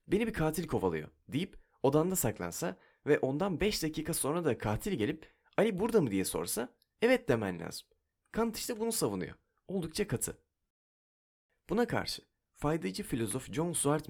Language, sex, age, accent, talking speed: Turkish, male, 30-49, native, 150 wpm